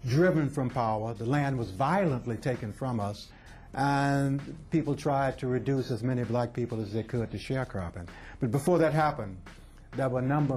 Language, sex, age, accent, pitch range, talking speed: English, male, 60-79, American, 110-140 Hz, 180 wpm